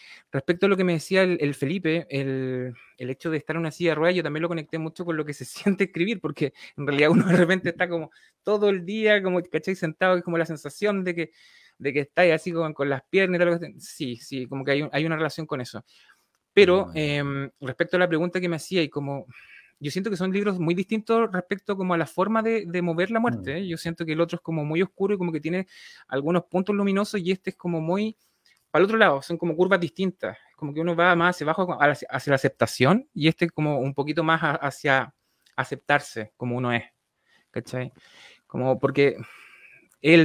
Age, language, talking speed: 20-39, Spanish, 225 wpm